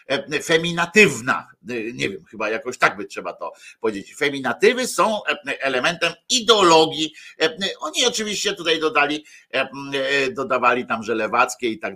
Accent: native